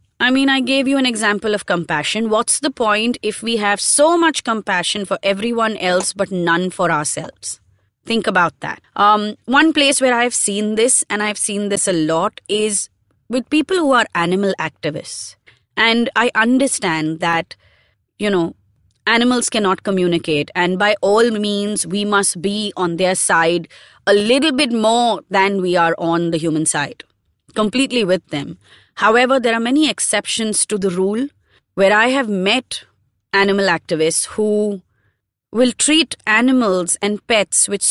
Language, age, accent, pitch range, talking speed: English, 20-39, Indian, 180-235 Hz, 160 wpm